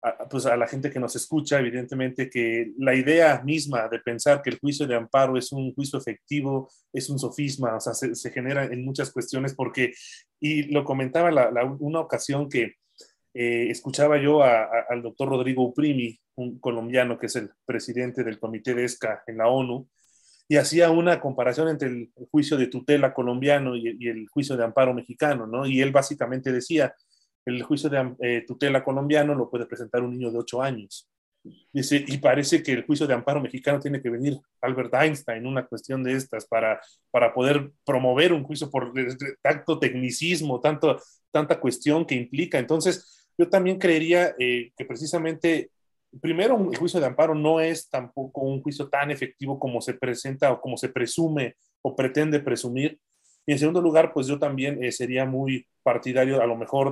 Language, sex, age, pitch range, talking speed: Spanish, male, 30-49, 125-145 Hz, 185 wpm